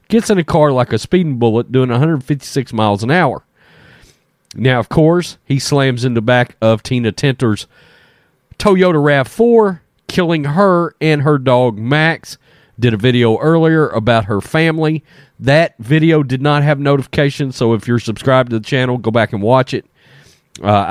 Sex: male